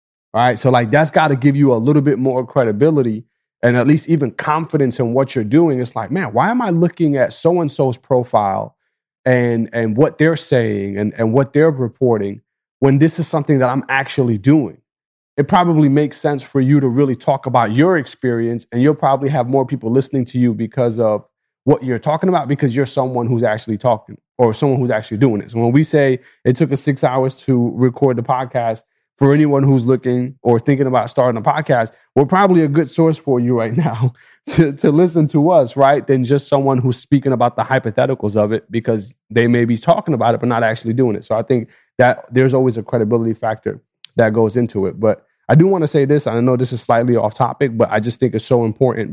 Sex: male